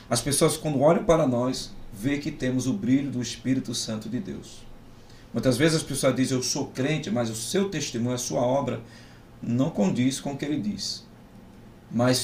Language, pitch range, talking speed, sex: Portuguese, 115-130 Hz, 190 wpm, male